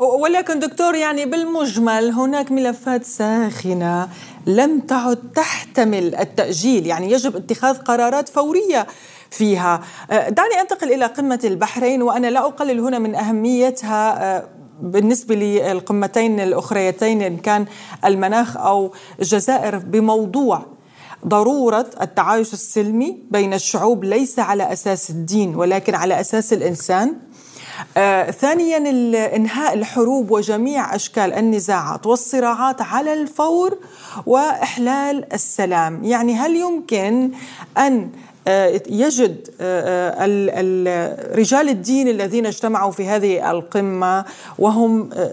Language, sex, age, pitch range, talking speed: Arabic, female, 30-49, 195-255 Hz, 100 wpm